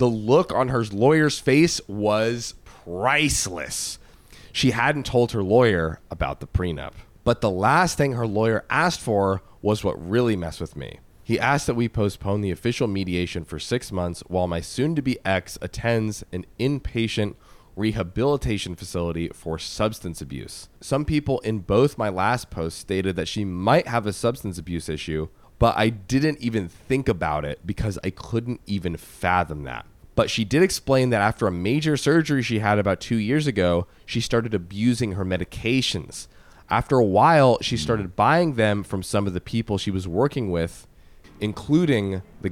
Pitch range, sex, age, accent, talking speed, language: 90-120 Hz, male, 20-39, American, 170 wpm, English